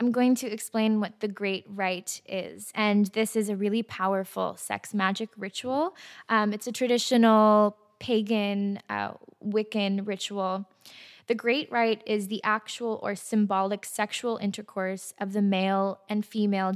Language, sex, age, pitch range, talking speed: English, female, 20-39, 190-220 Hz, 145 wpm